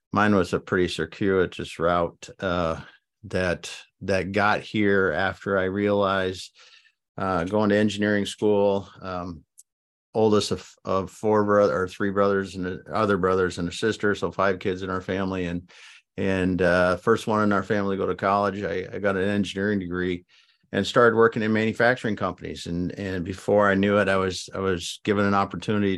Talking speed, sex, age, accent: 180 wpm, male, 50-69, American